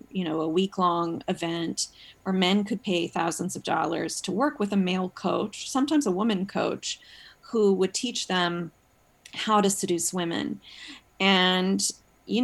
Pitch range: 175-210 Hz